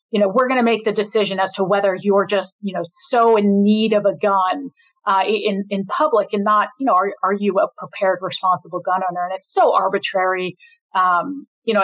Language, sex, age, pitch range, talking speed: English, female, 30-49, 190-245 Hz, 225 wpm